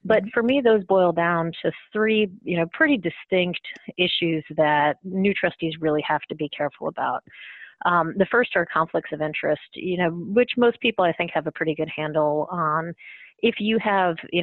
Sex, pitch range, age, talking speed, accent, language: female, 160-190 Hz, 30-49, 190 wpm, American, English